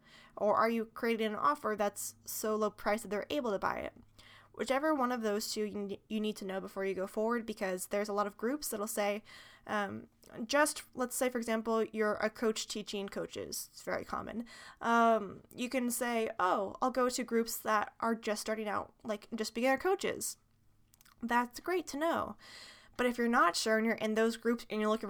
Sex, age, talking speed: female, 20-39, 210 wpm